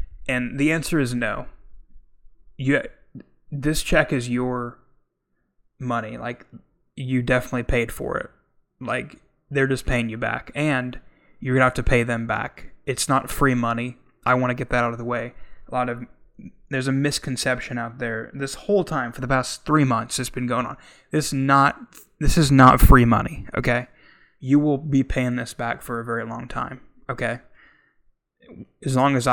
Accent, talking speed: American, 175 wpm